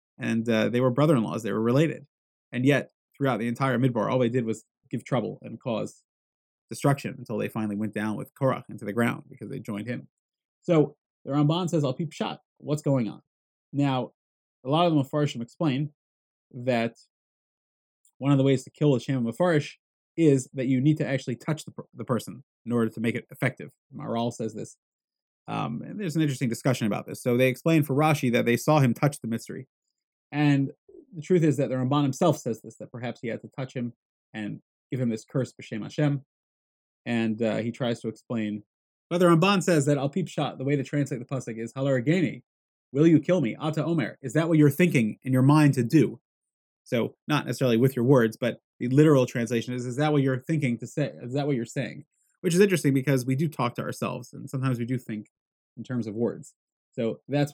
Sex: male